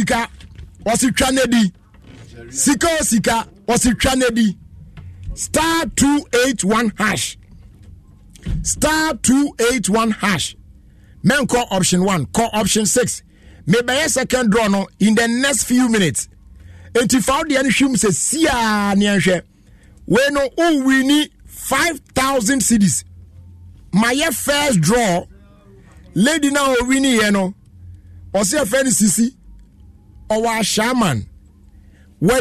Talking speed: 105 wpm